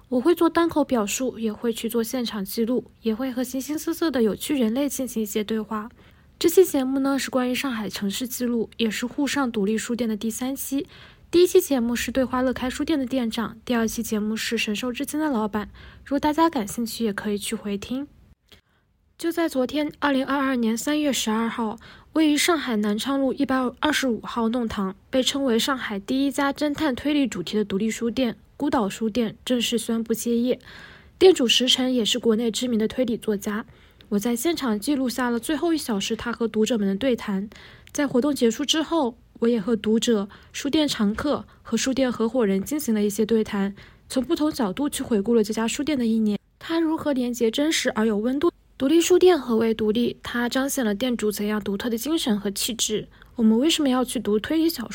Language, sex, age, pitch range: Chinese, female, 10-29, 225-280 Hz